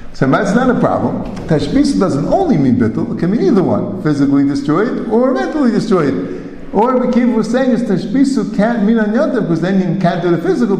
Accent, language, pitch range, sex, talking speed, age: American, English, 145-235 Hz, male, 205 wpm, 50-69